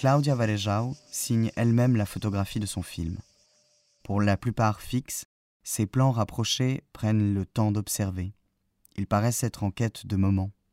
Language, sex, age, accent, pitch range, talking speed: French, male, 20-39, French, 95-115 Hz, 150 wpm